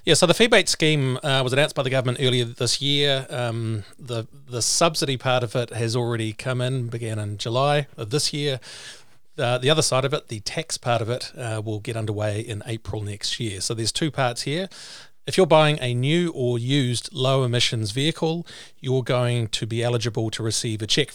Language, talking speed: English, 210 wpm